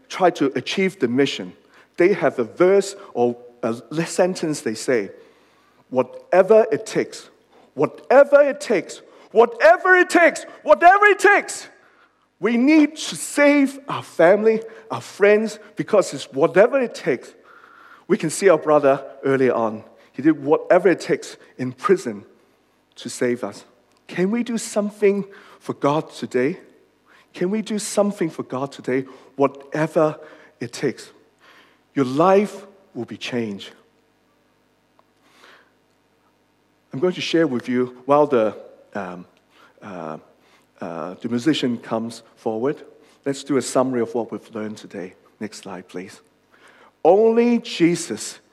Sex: male